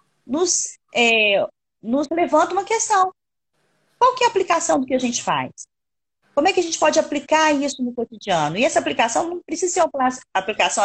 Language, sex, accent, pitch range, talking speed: Portuguese, female, Brazilian, 190-300 Hz, 190 wpm